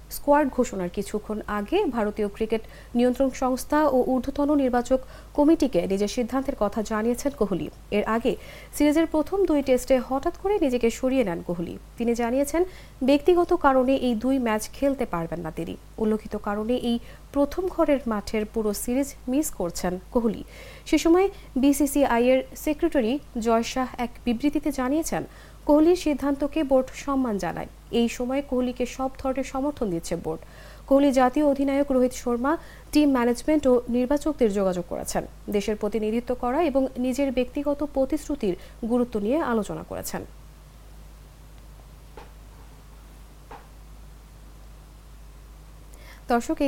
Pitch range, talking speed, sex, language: 220-285 Hz, 110 wpm, female, English